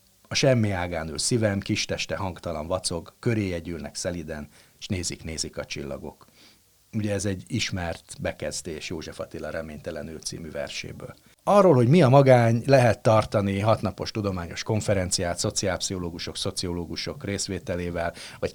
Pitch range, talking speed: 95-120 Hz, 130 wpm